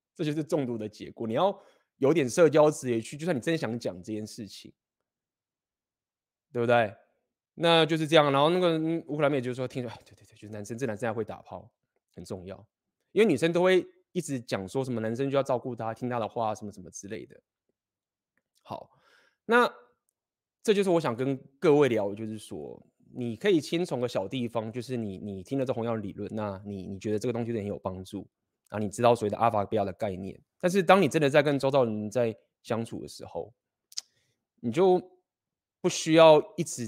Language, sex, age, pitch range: Chinese, male, 20-39, 115-160 Hz